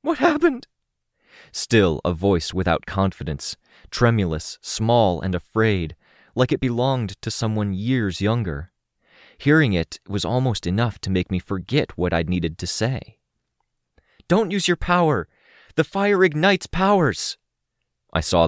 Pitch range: 80-115 Hz